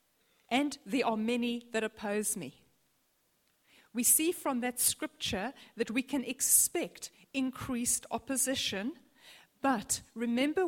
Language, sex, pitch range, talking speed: English, female, 230-295 Hz, 110 wpm